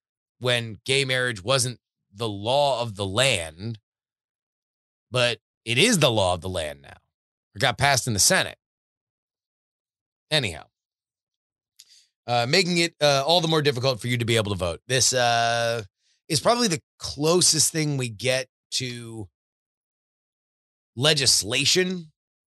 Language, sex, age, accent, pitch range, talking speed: English, male, 30-49, American, 115-145 Hz, 135 wpm